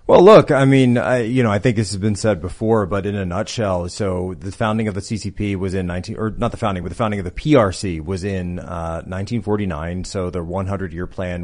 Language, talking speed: English, 230 wpm